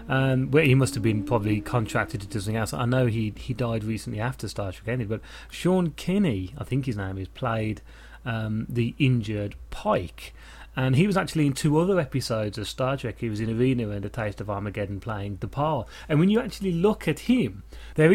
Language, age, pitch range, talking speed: English, 30-49, 105-140 Hz, 220 wpm